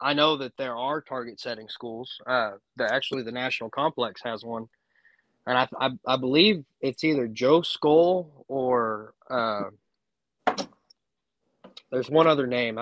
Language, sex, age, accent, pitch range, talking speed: English, male, 20-39, American, 115-140 Hz, 145 wpm